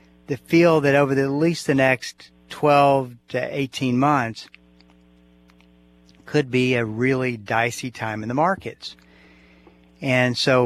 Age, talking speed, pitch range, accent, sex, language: 50-69, 135 wpm, 105-140 Hz, American, male, English